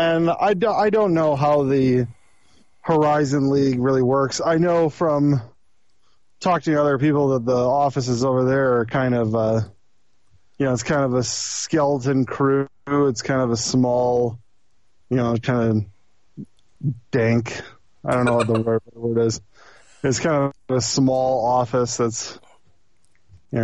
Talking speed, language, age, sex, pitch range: 160 wpm, English, 20-39, male, 120-145 Hz